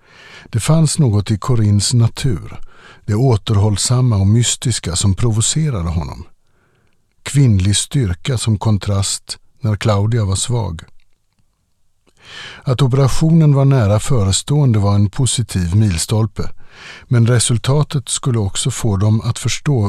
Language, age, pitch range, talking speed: Swedish, 60-79, 100-125 Hz, 115 wpm